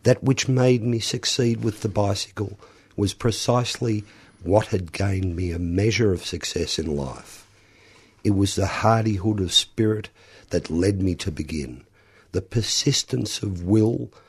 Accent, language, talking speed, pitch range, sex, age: Australian, English, 145 wpm, 90-115 Hz, male, 50-69